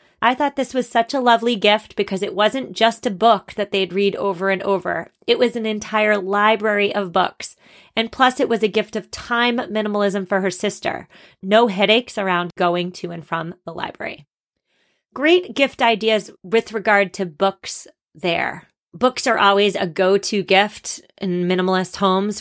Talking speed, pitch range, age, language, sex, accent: 175 wpm, 195-235 Hz, 30-49, English, female, American